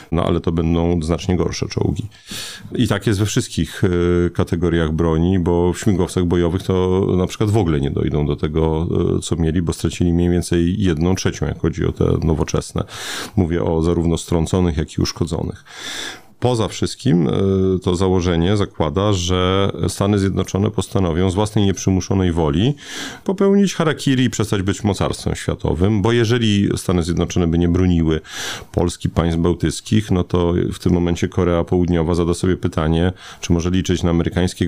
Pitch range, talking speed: 85-105 Hz, 160 wpm